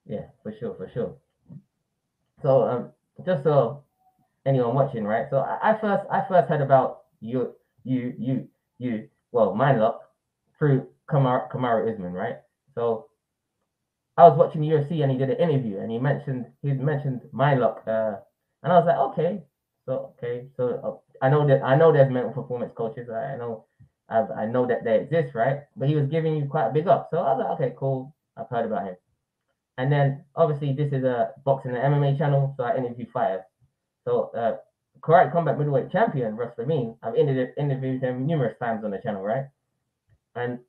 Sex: male